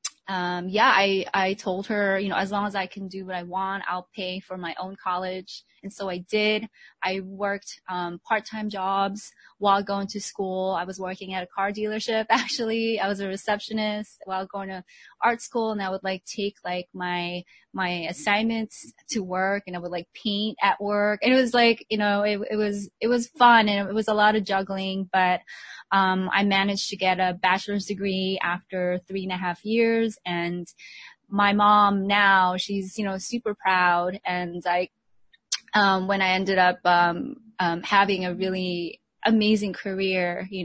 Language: English